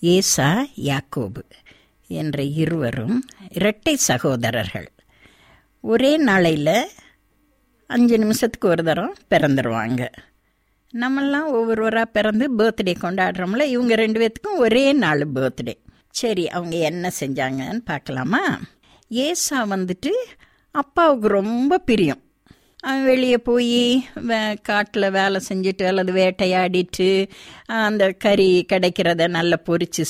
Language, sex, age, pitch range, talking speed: Tamil, female, 60-79, 160-255 Hz, 95 wpm